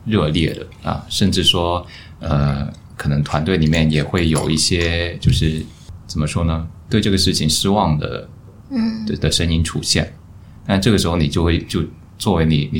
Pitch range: 80-95 Hz